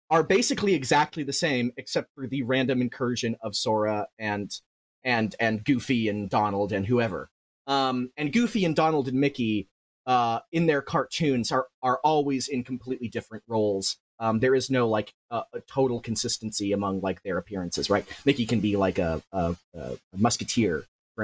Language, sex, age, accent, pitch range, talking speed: English, male, 30-49, American, 115-170 Hz, 170 wpm